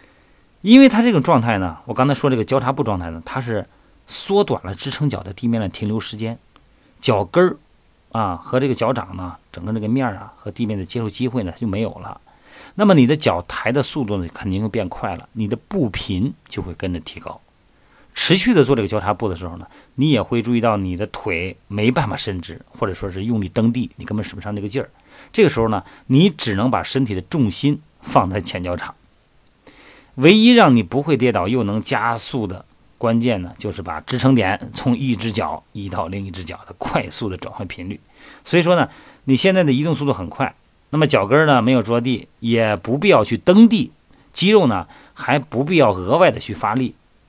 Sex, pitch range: male, 100-135 Hz